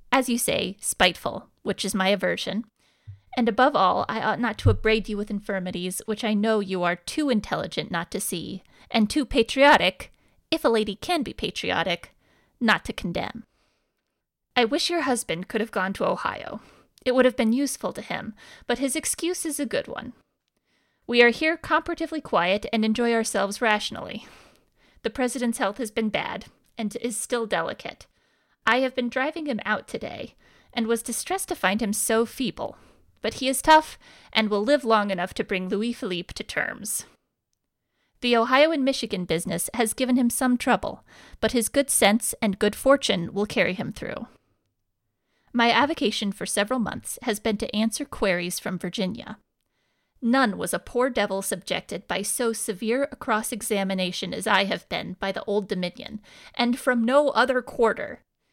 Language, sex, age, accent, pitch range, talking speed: English, female, 30-49, American, 205-255 Hz, 175 wpm